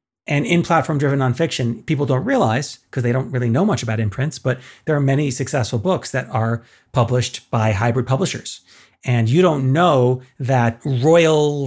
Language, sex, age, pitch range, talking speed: English, male, 30-49, 120-145 Hz, 170 wpm